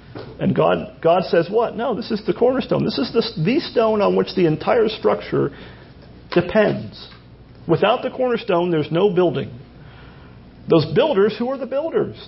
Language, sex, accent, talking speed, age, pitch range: English, male, American, 160 wpm, 40-59, 145-210 Hz